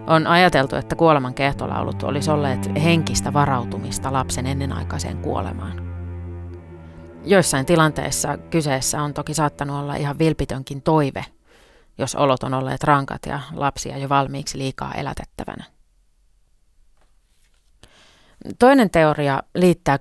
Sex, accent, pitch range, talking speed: female, native, 130-160 Hz, 110 wpm